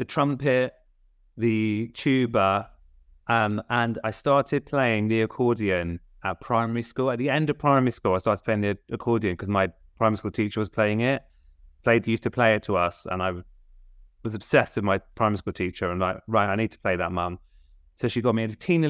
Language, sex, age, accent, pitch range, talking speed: English, male, 30-49, British, 95-120 Hz, 205 wpm